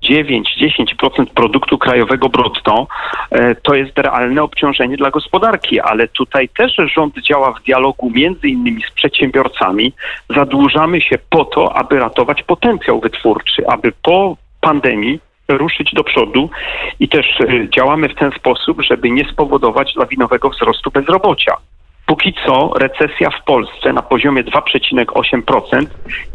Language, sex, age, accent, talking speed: Polish, male, 40-59, native, 125 wpm